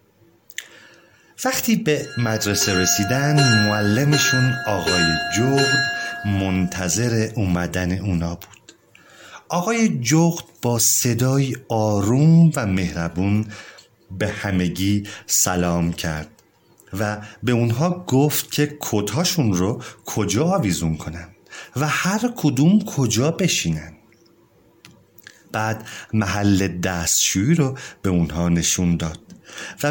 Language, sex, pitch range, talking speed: Persian, male, 95-150 Hz, 90 wpm